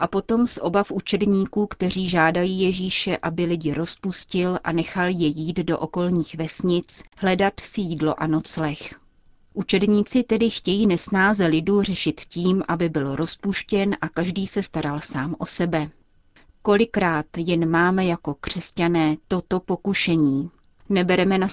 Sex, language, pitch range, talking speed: female, Czech, 160-195 Hz, 135 wpm